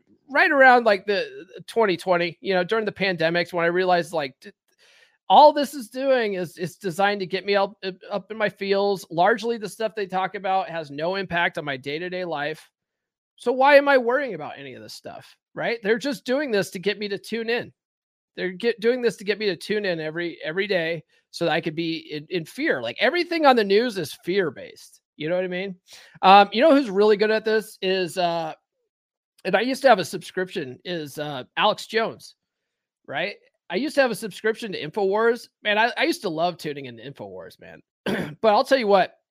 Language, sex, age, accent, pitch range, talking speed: English, male, 30-49, American, 170-220 Hz, 215 wpm